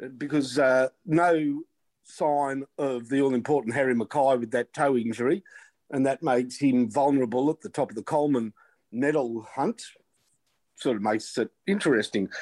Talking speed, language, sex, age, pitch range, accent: 150 wpm, English, male, 50-69, 125-155 Hz, Australian